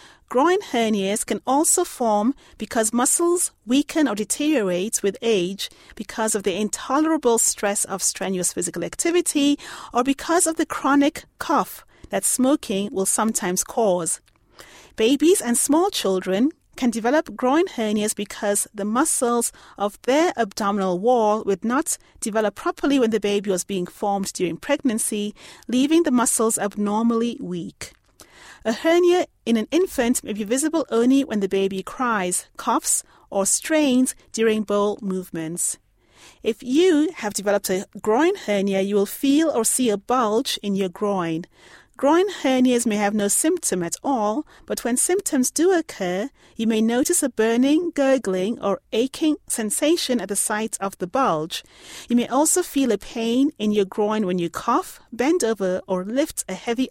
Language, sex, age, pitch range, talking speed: English, female, 30-49, 205-280 Hz, 155 wpm